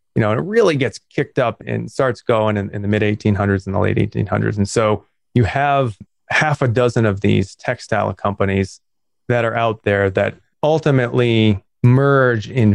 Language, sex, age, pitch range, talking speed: English, male, 30-49, 100-120 Hz, 185 wpm